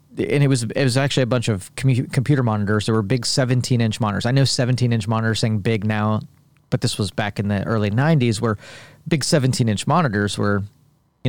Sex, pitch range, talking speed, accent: male, 110-130 Hz, 200 wpm, American